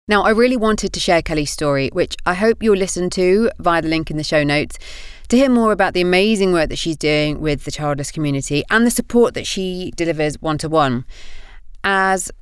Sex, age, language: female, 30-49, English